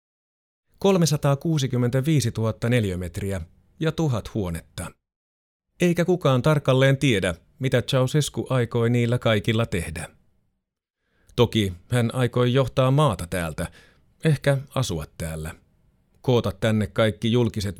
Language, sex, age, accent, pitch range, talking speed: Finnish, male, 30-49, native, 95-130 Hz, 100 wpm